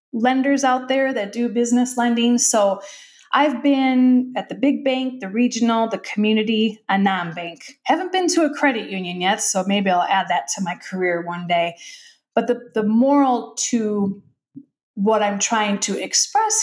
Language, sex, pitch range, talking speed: English, female, 195-245 Hz, 170 wpm